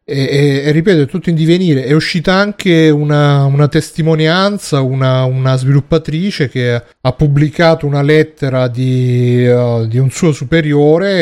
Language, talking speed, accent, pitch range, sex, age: Italian, 150 wpm, native, 125-150 Hz, male, 30-49